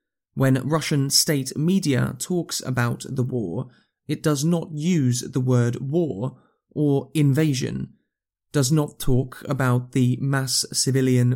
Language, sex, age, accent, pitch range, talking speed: English, male, 20-39, British, 125-145 Hz, 125 wpm